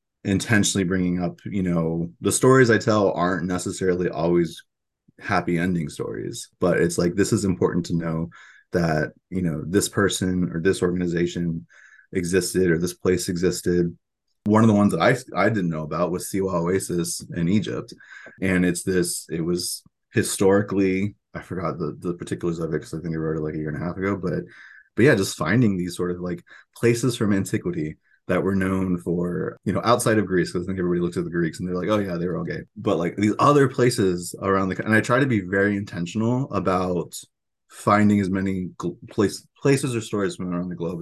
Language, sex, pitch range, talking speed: English, male, 85-105 Hz, 210 wpm